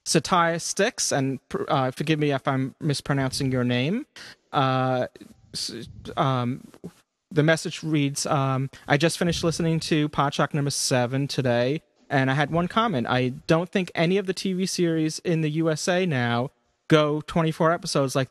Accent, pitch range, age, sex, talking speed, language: American, 130-160 Hz, 30-49, male, 155 wpm, English